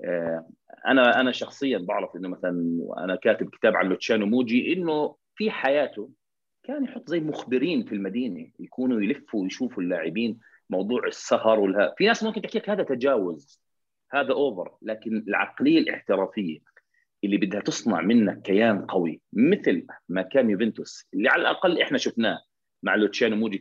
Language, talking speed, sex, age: Arabic, 145 wpm, male, 30-49